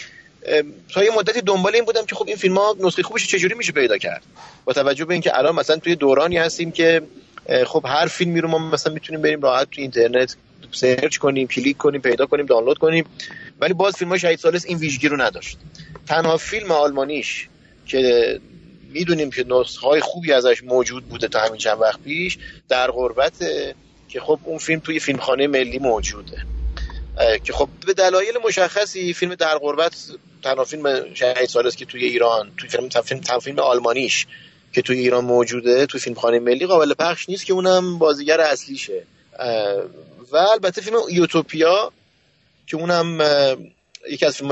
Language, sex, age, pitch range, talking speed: Persian, male, 30-49, 130-180 Hz, 165 wpm